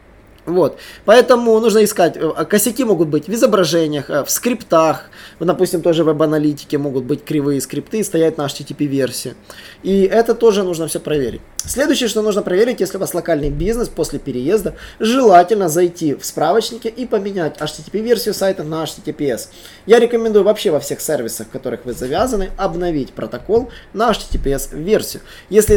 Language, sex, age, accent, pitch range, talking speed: Russian, male, 20-39, native, 150-215 Hz, 150 wpm